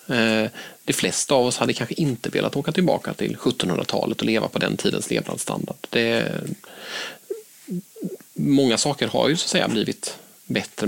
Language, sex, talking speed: Swedish, male, 160 wpm